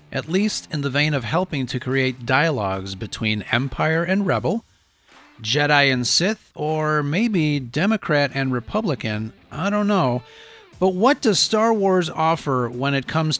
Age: 40-59